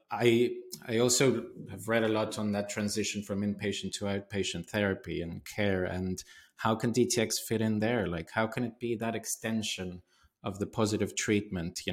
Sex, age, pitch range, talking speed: male, 30-49, 95-110 Hz, 180 wpm